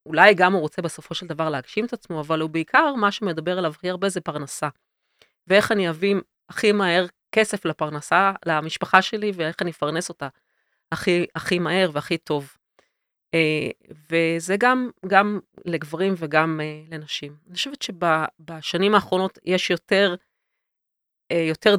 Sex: female